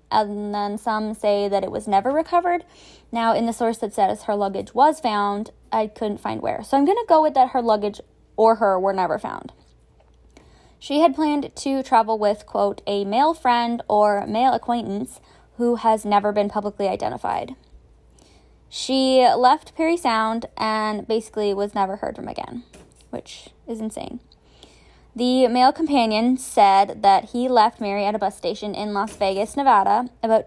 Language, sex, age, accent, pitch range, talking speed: English, female, 10-29, American, 205-255 Hz, 170 wpm